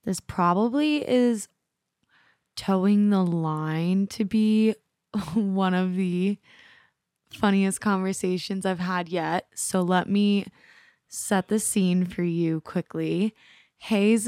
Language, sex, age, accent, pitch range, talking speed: English, female, 20-39, American, 170-195 Hz, 110 wpm